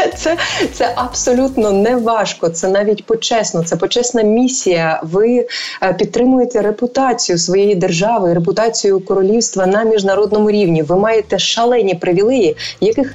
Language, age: Ukrainian, 20-39